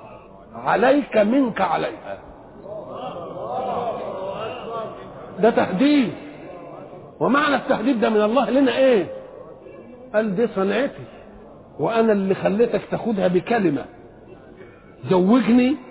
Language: Swedish